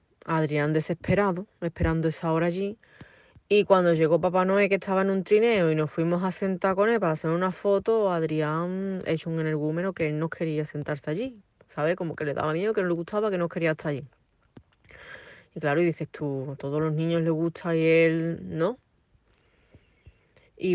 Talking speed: 195 wpm